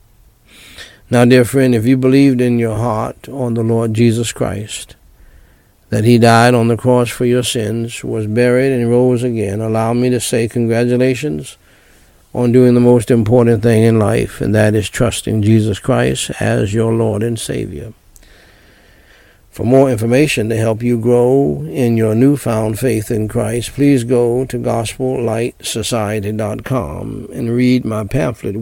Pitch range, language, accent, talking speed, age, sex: 105-125 Hz, English, American, 155 wpm, 60-79, male